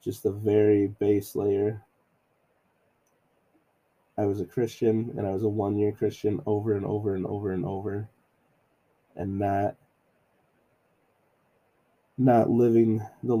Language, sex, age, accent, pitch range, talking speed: English, male, 20-39, American, 100-120 Hz, 125 wpm